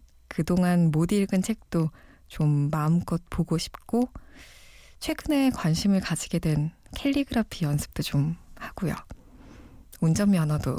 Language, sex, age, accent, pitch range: Korean, female, 20-39, native, 155-210 Hz